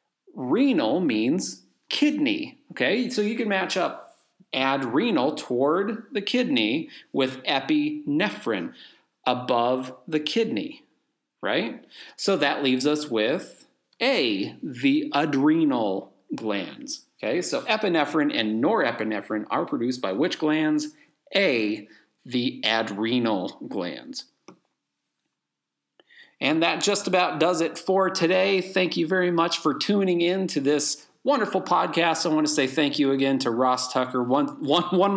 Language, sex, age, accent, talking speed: English, male, 40-59, American, 125 wpm